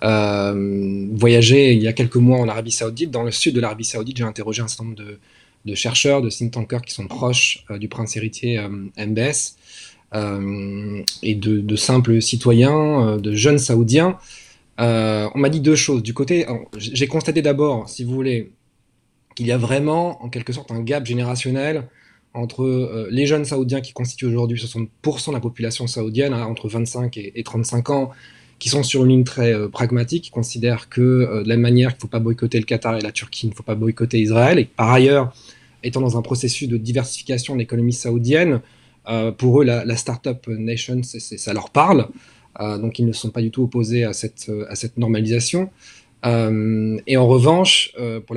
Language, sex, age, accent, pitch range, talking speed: French, male, 20-39, French, 115-130 Hz, 200 wpm